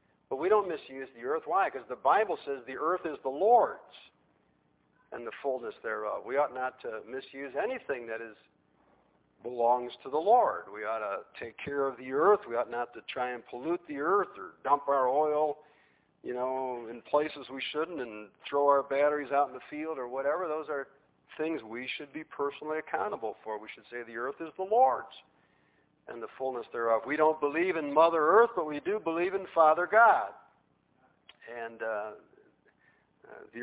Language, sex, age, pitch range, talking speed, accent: English, male, 50-69, 130-175 Hz, 190 wpm, American